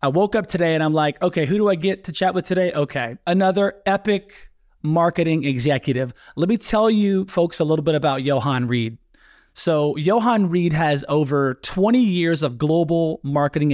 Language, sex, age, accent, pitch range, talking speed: English, male, 20-39, American, 145-185 Hz, 185 wpm